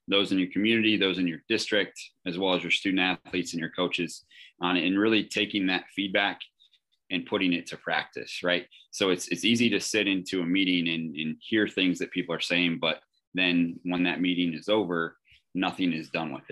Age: 20-39